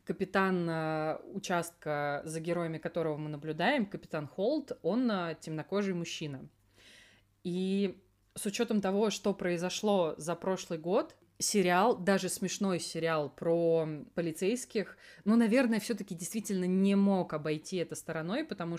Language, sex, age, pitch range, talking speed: Russian, female, 20-39, 155-185 Hz, 120 wpm